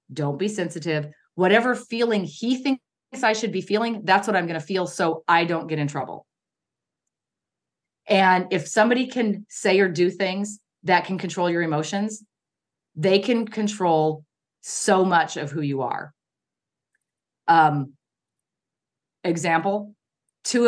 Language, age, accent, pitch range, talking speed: English, 30-49, American, 155-205 Hz, 140 wpm